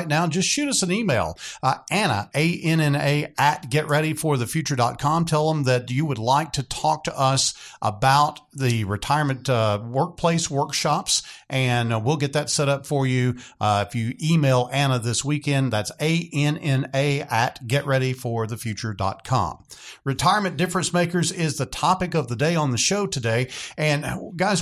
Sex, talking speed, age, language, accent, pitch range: male, 150 wpm, 50-69, English, American, 125-160 Hz